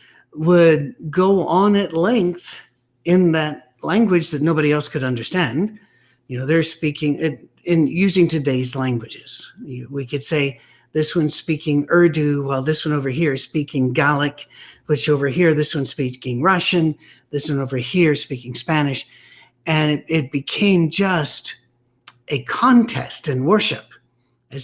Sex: male